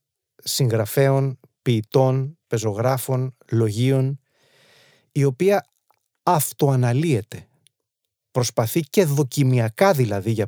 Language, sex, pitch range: Greek, male, 115-140 Hz